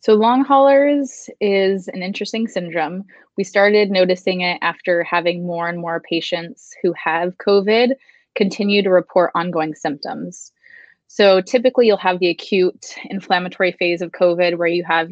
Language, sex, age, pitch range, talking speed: English, female, 20-39, 175-200 Hz, 150 wpm